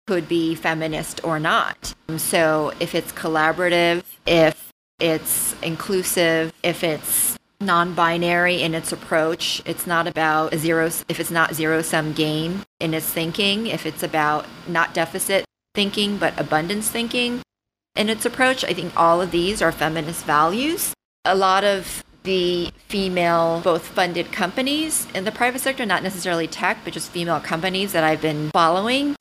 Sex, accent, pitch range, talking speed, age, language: female, American, 160-190 Hz, 150 wpm, 30-49, English